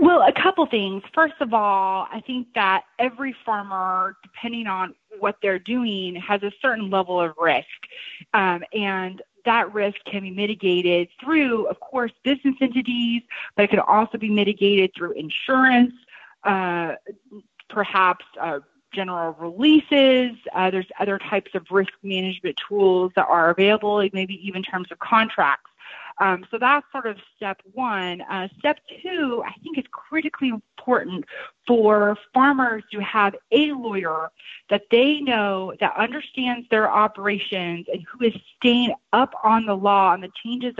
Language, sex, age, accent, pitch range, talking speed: English, female, 30-49, American, 190-245 Hz, 155 wpm